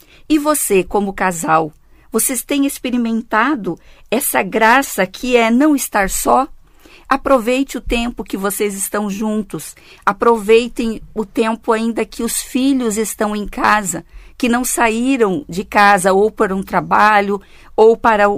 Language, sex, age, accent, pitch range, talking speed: Portuguese, female, 50-69, Brazilian, 195-255 Hz, 135 wpm